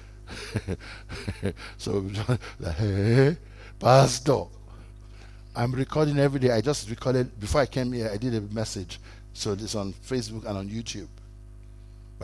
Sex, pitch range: male, 105-130 Hz